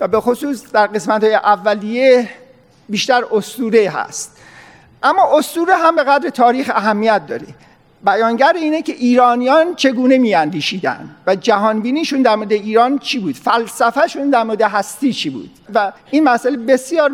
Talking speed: 145 wpm